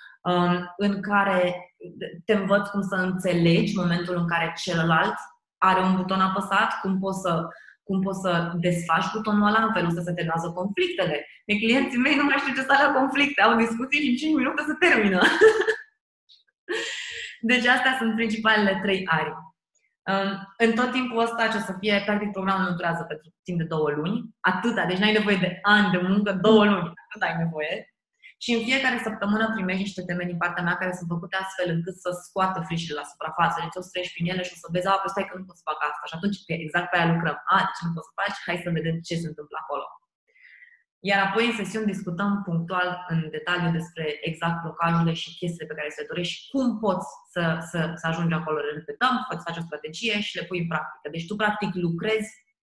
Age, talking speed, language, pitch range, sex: 20-39, 205 wpm, Romanian, 170-215 Hz, female